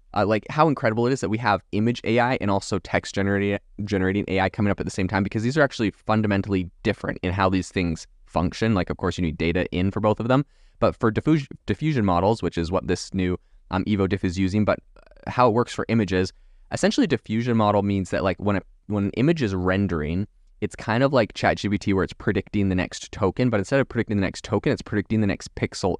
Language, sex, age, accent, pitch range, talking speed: English, male, 20-39, American, 90-110 Hz, 230 wpm